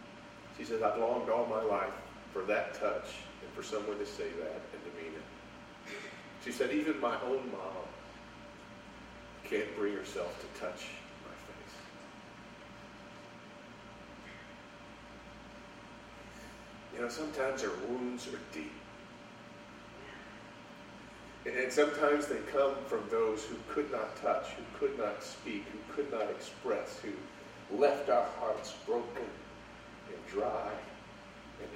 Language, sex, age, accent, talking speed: English, male, 40-59, American, 125 wpm